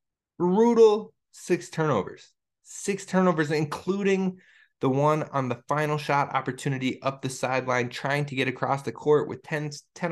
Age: 20-39